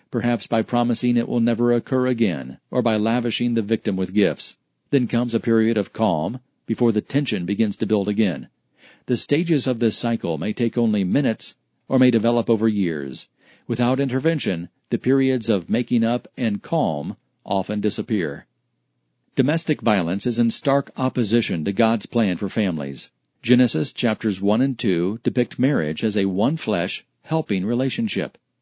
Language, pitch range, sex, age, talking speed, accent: English, 105-130 Hz, male, 50-69, 160 wpm, American